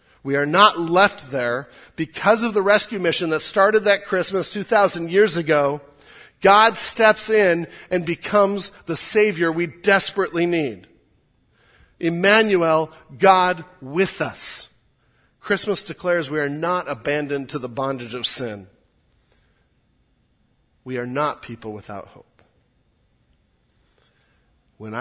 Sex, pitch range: male, 120-175 Hz